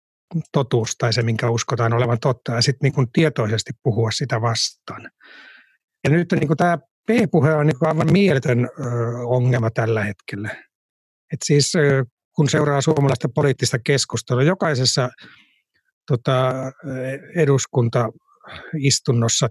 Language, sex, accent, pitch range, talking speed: Finnish, male, native, 120-155 Hz, 110 wpm